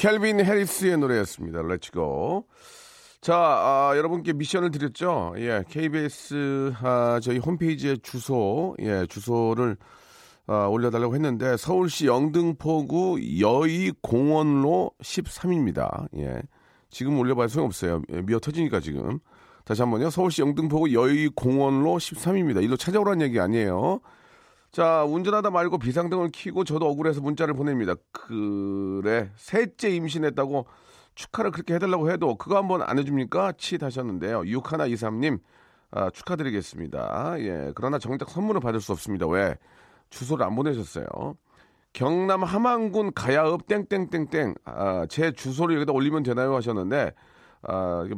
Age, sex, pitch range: 40-59, male, 120-175 Hz